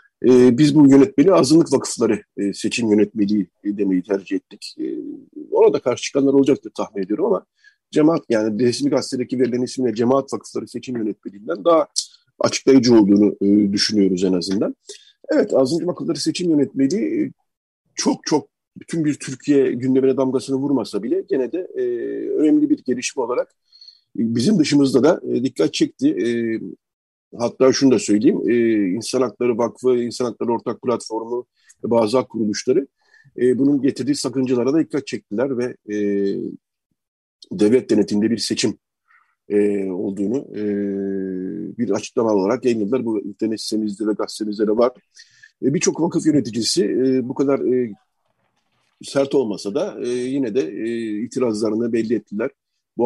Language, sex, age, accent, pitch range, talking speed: Turkish, male, 50-69, native, 105-140 Hz, 135 wpm